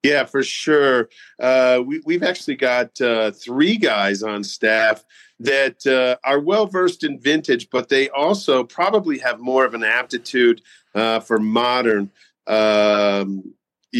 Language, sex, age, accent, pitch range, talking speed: English, male, 40-59, American, 110-135 Hz, 135 wpm